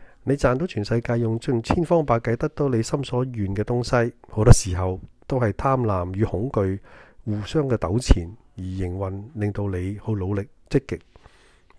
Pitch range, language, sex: 95-120 Hz, Chinese, male